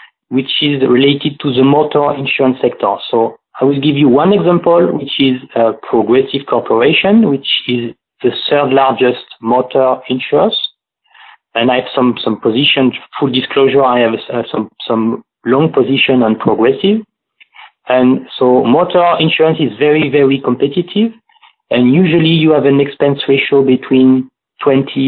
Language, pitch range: English, 125-150 Hz